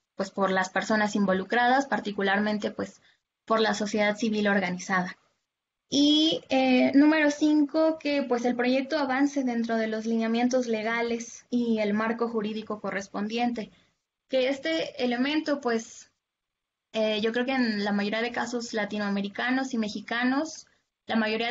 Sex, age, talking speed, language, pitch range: female, 20-39, 135 wpm, Spanish, 200-245 Hz